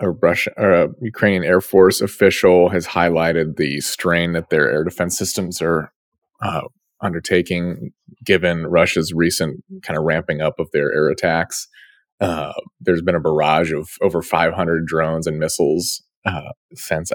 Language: English